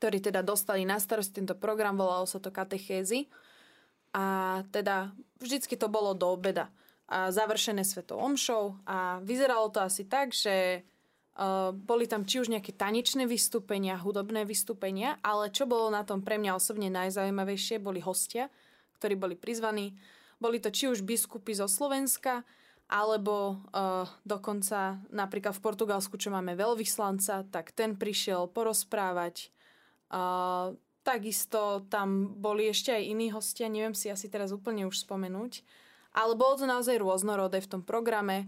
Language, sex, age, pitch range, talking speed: Slovak, female, 20-39, 195-230 Hz, 150 wpm